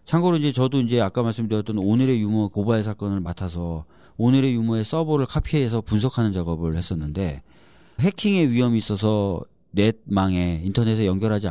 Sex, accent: male, native